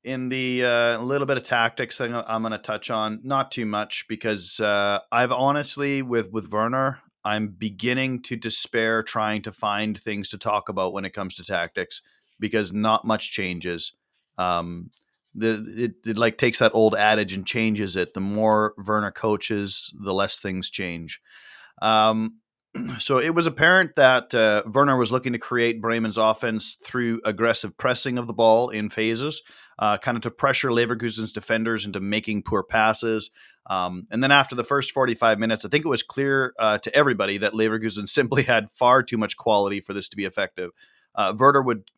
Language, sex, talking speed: English, male, 180 wpm